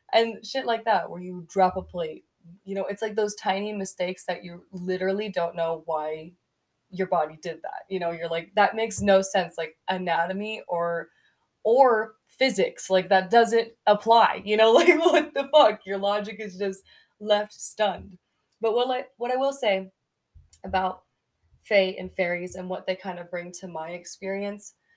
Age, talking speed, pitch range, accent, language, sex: 20-39, 180 wpm, 170-210 Hz, American, English, female